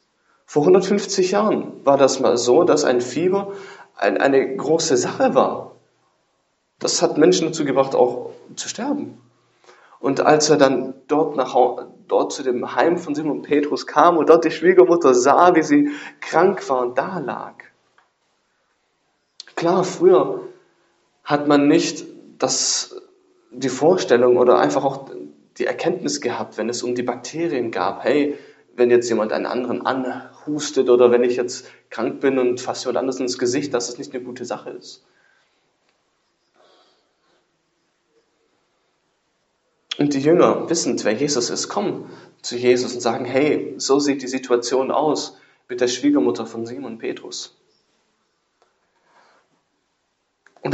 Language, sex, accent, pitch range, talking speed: English, male, German, 125-175 Hz, 135 wpm